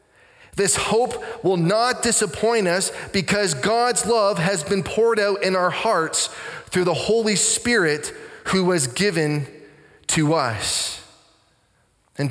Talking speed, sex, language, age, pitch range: 125 wpm, male, English, 20-39, 175-220 Hz